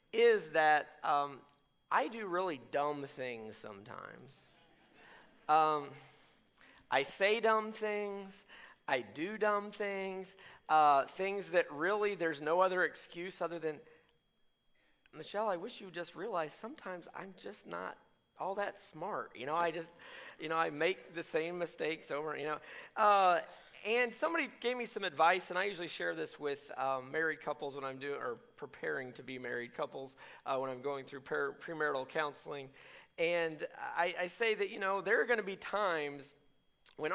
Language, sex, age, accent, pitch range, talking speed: English, male, 40-59, American, 150-210 Hz, 165 wpm